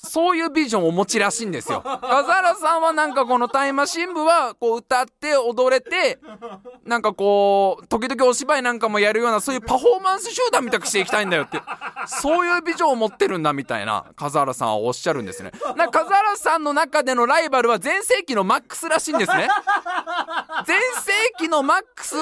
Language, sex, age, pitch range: Japanese, male, 20-39, 240-350 Hz